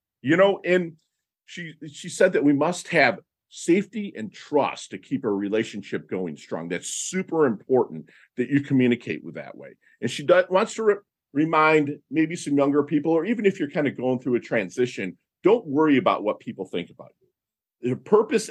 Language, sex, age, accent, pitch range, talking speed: English, male, 50-69, American, 120-165 Hz, 190 wpm